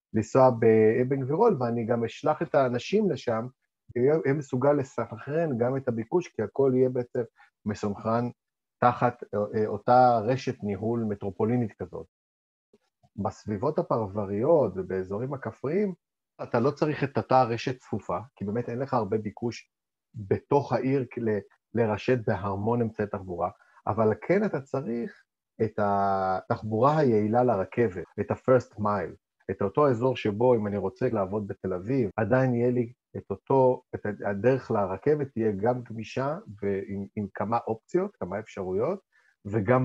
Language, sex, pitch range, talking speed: Hebrew, male, 105-130 Hz, 130 wpm